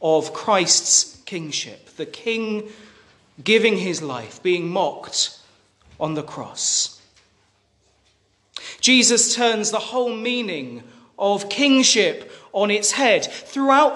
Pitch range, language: 185-245 Hz, English